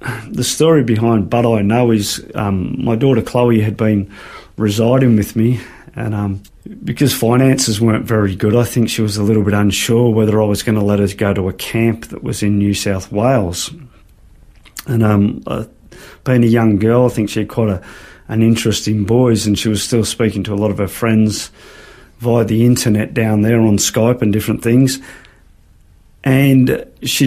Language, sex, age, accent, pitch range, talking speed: English, male, 40-59, Australian, 105-120 Hz, 190 wpm